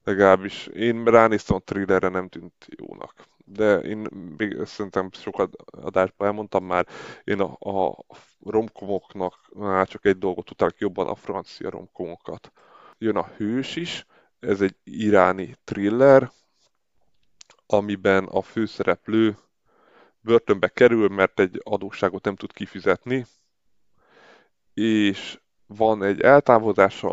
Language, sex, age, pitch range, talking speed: Hungarian, male, 20-39, 95-110 Hz, 115 wpm